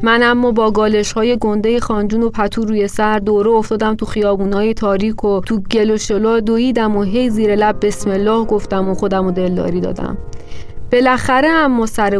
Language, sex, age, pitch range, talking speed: Persian, female, 30-49, 205-250 Hz, 165 wpm